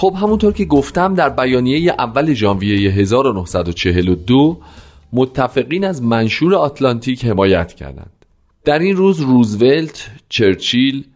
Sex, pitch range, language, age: male, 95-145 Hz, Persian, 40-59